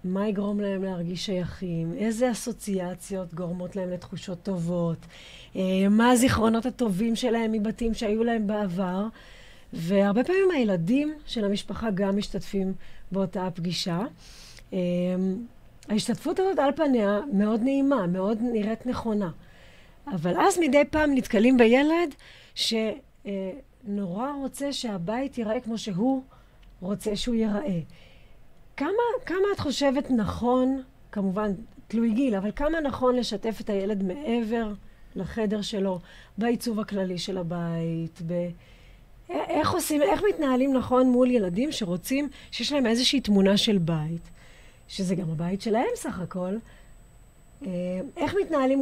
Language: Hebrew